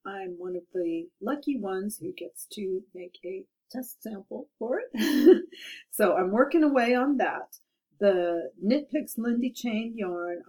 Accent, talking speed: American, 155 wpm